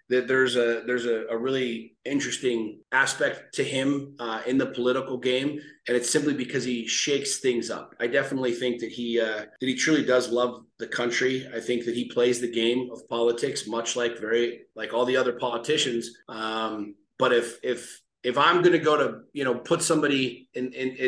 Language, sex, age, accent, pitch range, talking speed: English, male, 30-49, American, 125-145 Hz, 200 wpm